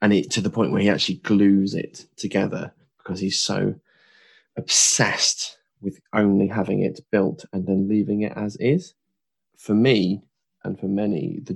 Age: 20-39